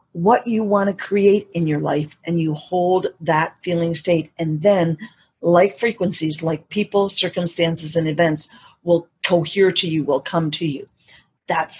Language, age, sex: English, 40-59, female